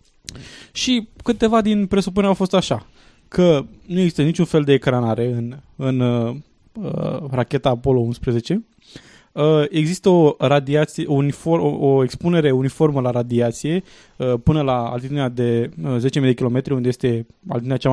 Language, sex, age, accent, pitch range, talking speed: Romanian, male, 20-39, native, 125-160 Hz, 155 wpm